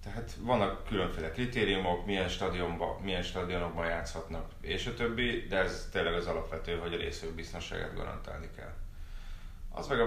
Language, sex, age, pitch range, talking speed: Hungarian, male, 30-49, 80-95 Hz, 150 wpm